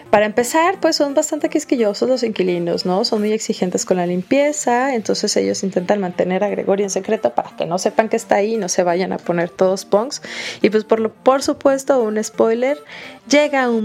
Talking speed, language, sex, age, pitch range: 210 wpm, Spanish, female, 30-49, 190-245 Hz